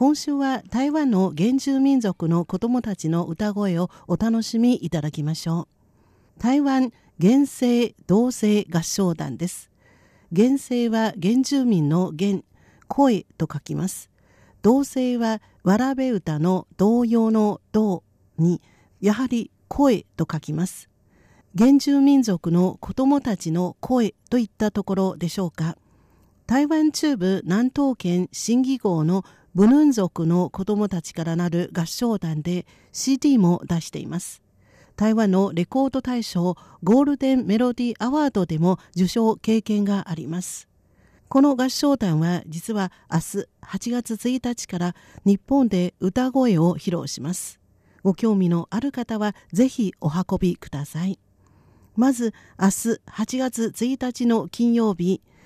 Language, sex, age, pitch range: Japanese, female, 50-69, 170-245 Hz